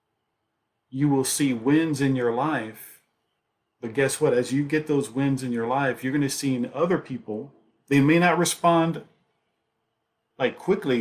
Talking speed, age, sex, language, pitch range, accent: 165 wpm, 40-59, male, English, 120-145 Hz, American